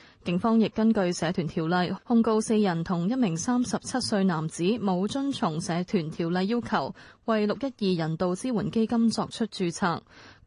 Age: 20-39